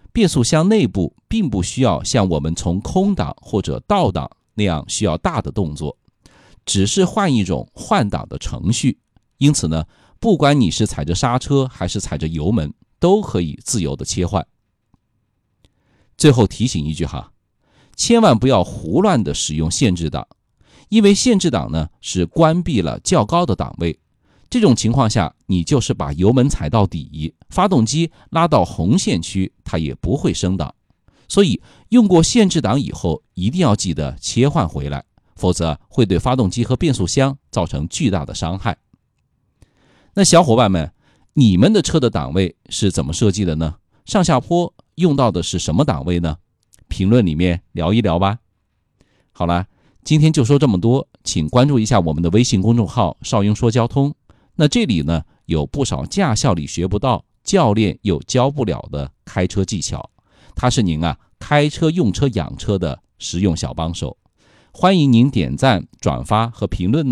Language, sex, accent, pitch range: Chinese, male, native, 85-135 Hz